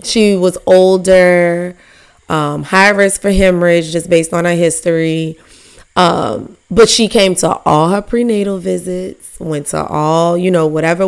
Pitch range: 175-210 Hz